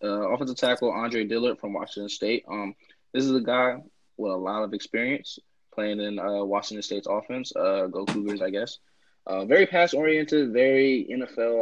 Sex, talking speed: male, 180 wpm